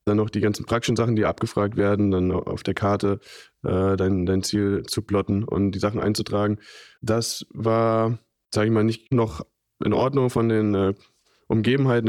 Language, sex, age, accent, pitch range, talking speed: German, male, 20-39, German, 95-110 Hz, 180 wpm